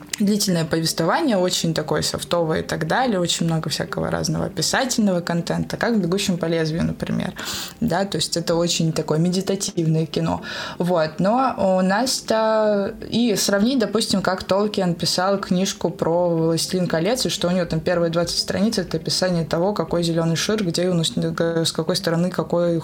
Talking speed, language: 170 wpm, Russian